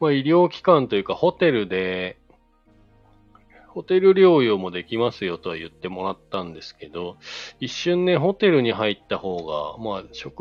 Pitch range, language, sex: 90-145 Hz, Japanese, male